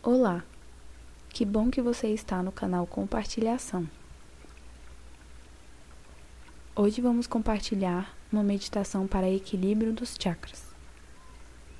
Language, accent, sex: Portuguese, Brazilian, female